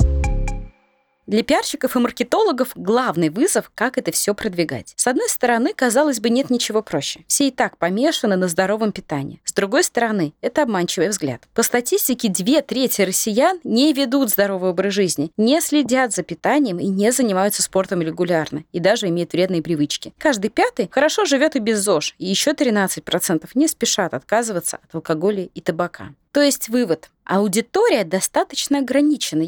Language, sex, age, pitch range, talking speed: Russian, female, 20-39, 180-270 Hz, 160 wpm